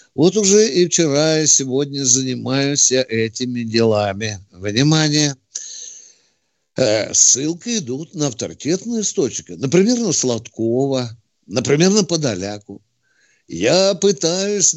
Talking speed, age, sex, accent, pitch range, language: 95 wpm, 60-79, male, native, 125-200 Hz, Russian